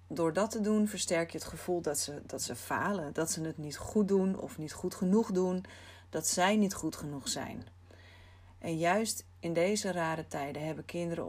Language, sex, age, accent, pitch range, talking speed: Dutch, female, 40-59, Dutch, 140-185 Hz, 195 wpm